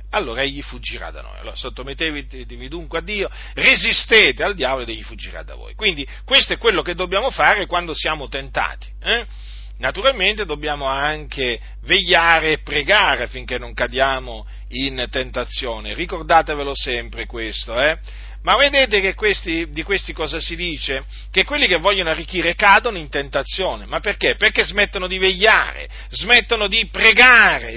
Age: 40-59